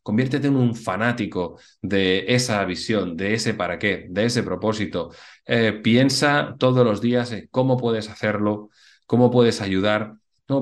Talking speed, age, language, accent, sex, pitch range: 155 wpm, 30-49, Spanish, Spanish, male, 100-125 Hz